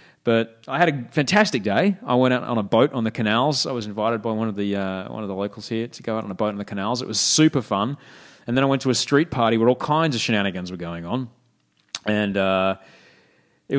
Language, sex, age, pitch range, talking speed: English, male, 30-49, 110-140 Hz, 260 wpm